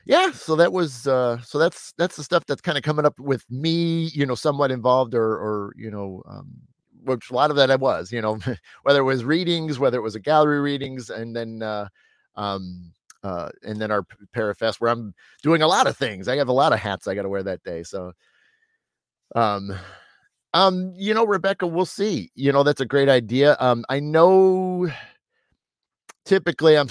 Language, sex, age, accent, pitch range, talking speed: English, male, 30-49, American, 110-150 Hz, 205 wpm